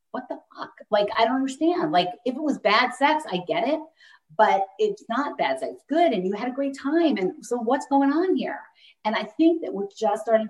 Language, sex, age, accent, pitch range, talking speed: English, female, 40-59, American, 185-275 Hz, 240 wpm